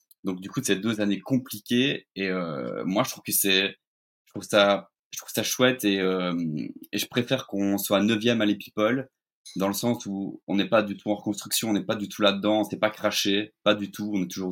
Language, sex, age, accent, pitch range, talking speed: French, male, 20-39, French, 95-110 Hz, 240 wpm